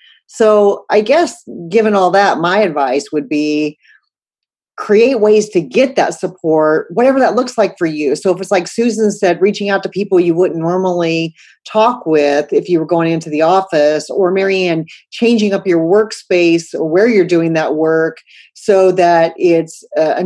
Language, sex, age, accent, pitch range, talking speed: English, female, 40-59, American, 165-210 Hz, 180 wpm